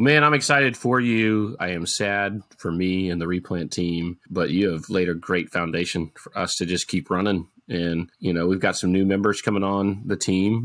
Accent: American